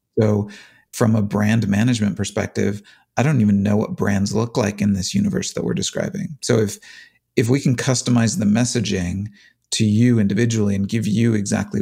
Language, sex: English, male